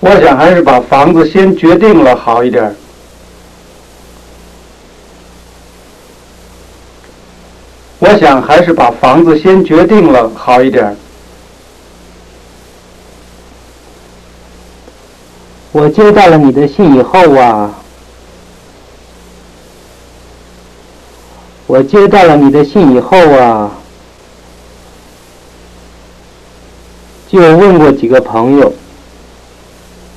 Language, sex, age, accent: English, male, 50-69, Chinese